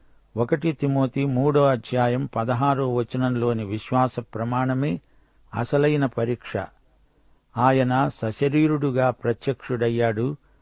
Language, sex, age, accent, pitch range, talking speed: Telugu, male, 60-79, native, 120-140 Hz, 70 wpm